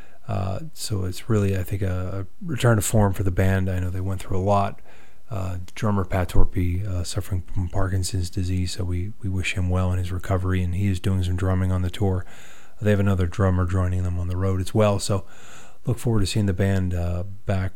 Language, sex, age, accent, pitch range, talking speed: English, male, 30-49, American, 90-105 Hz, 225 wpm